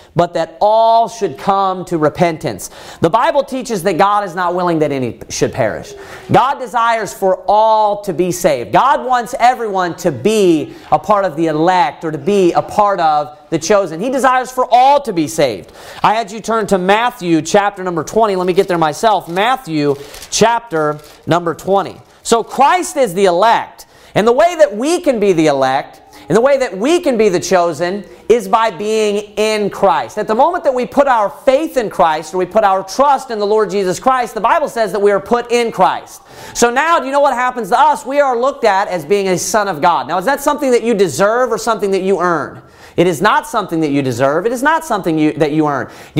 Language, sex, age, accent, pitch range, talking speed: English, male, 40-59, American, 185-260 Hz, 225 wpm